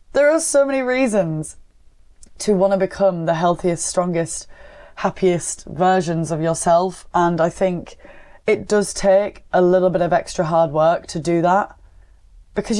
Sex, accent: female, British